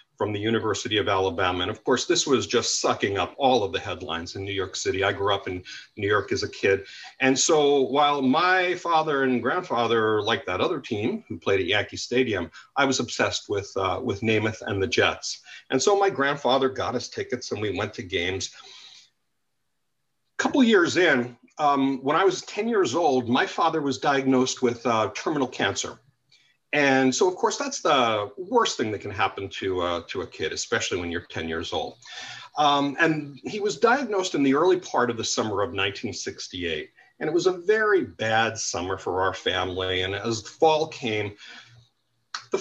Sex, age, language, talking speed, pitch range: male, 40-59, English, 195 wpm, 115-180 Hz